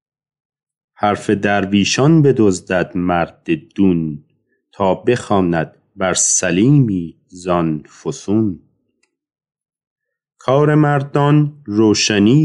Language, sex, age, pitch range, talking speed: Persian, male, 40-59, 90-120 Hz, 65 wpm